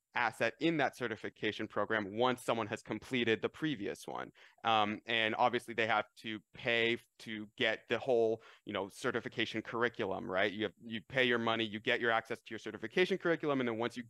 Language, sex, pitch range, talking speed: English, male, 110-140 Hz, 195 wpm